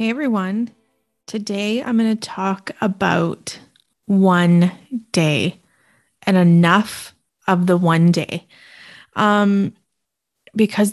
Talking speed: 100 wpm